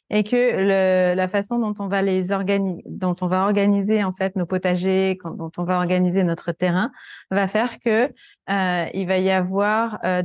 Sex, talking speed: female, 195 wpm